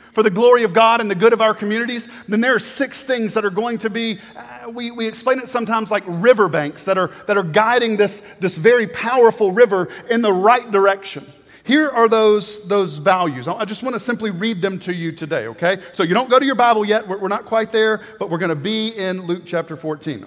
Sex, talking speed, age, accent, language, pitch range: male, 235 wpm, 40-59, American, English, 175-225 Hz